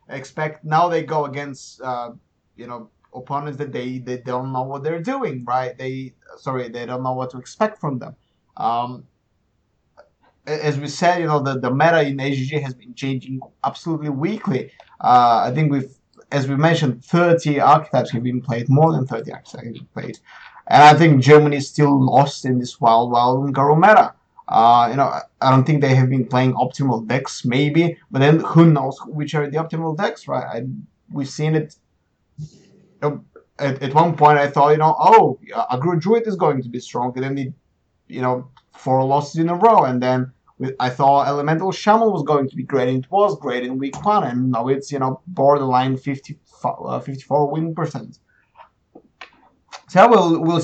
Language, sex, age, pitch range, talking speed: English, male, 30-49, 125-155 Hz, 195 wpm